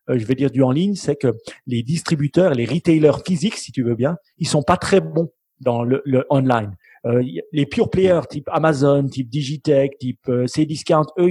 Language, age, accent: French, 40-59, French